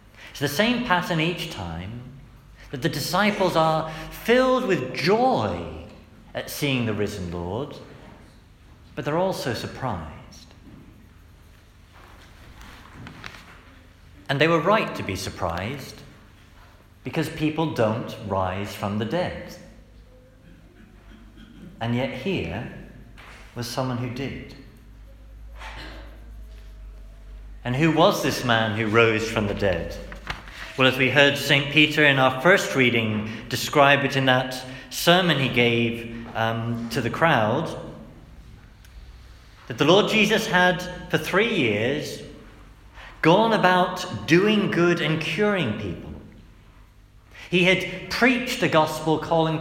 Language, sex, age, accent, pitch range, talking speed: English, male, 50-69, British, 105-165 Hz, 115 wpm